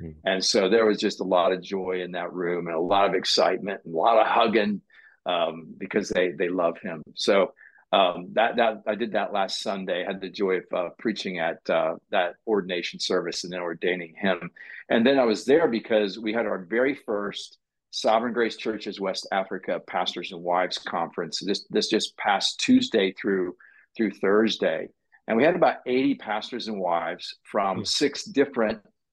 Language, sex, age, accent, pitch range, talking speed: English, male, 50-69, American, 95-115 Hz, 190 wpm